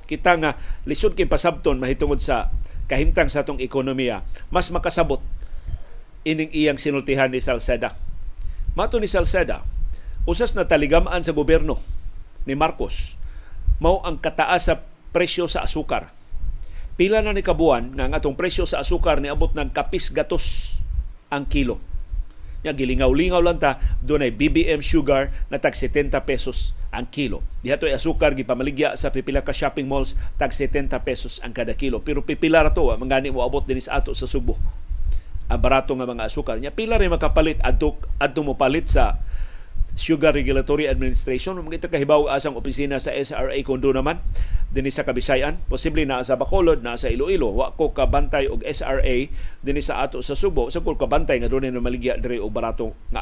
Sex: male